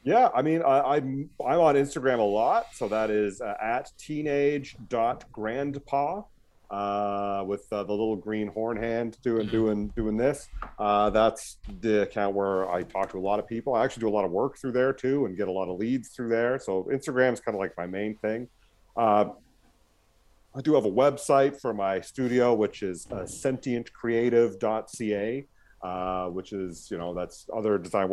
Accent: American